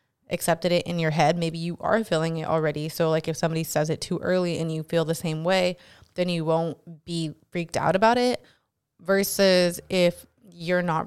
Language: English